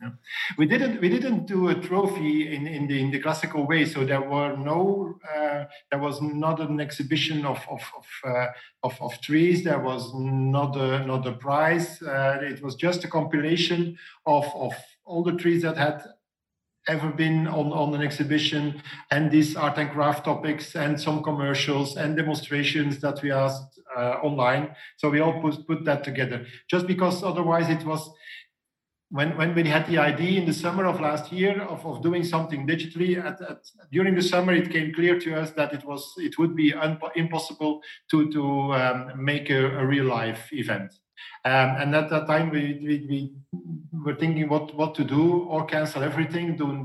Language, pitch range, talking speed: English, 140-165 Hz, 190 wpm